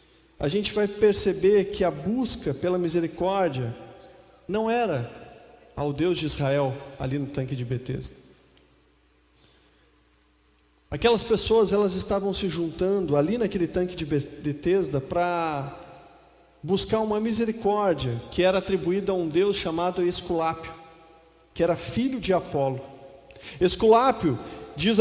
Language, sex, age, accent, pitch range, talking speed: Portuguese, male, 40-59, Brazilian, 165-235 Hz, 120 wpm